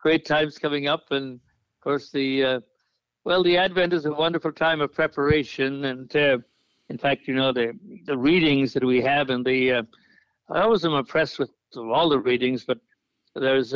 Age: 60-79